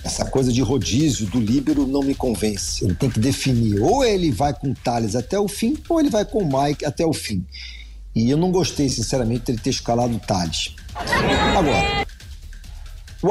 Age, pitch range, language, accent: 50-69, 105-145 Hz, Portuguese, Brazilian